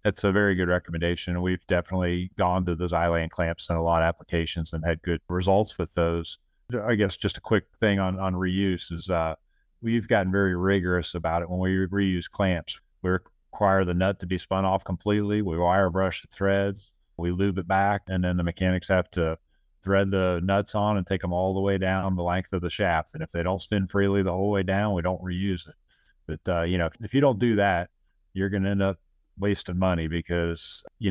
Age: 30-49